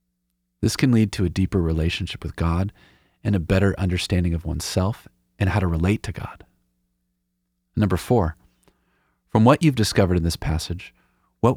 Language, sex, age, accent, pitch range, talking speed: English, male, 40-59, American, 80-100 Hz, 160 wpm